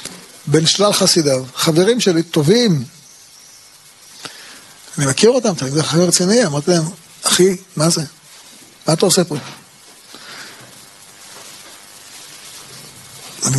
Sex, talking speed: male, 95 wpm